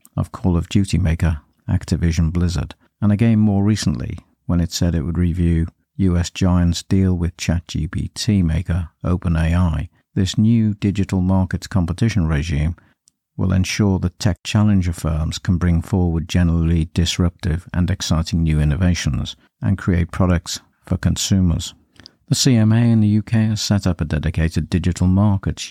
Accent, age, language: British, 50-69, English